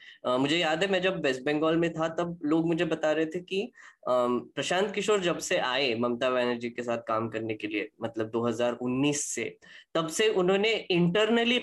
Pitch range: 125-175 Hz